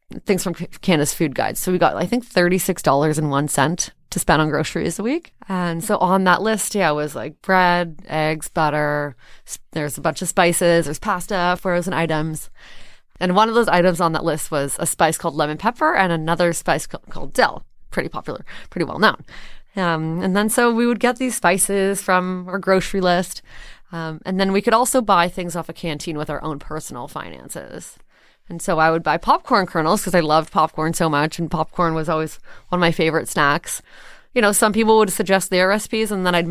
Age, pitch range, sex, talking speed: 20-39, 160-195 Hz, female, 205 wpm